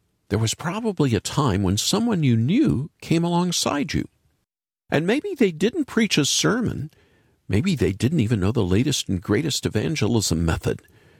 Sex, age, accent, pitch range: male, 50-69, American, 95-155 Hz